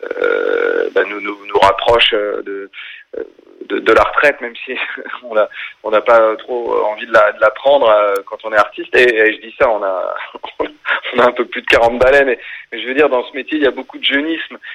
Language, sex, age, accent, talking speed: French, male, 30-49, French, 230 wpm